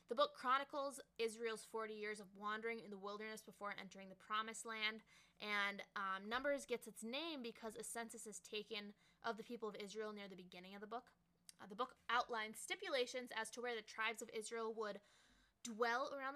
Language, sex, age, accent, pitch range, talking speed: English, female, 20-39, American, 200-235 Hz, 195 wpm